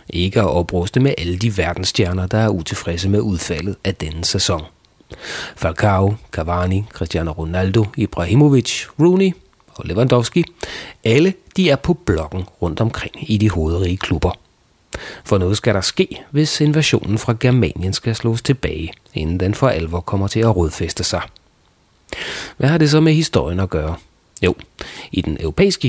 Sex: male